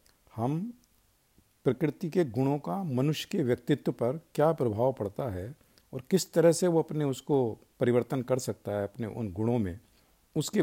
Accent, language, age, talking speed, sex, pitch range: native, Hindi, 50-69, 165 wpm, male, 115-155 Hz